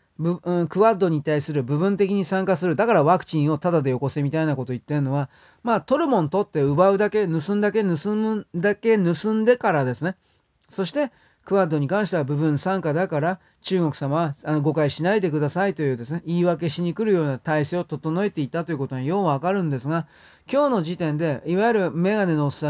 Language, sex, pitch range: Japanese, male, 150-195 Hz